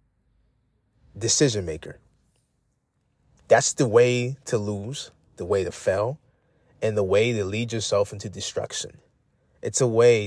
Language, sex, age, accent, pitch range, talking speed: English, male, 30-49, American, 105-145 Hz, 130 wpm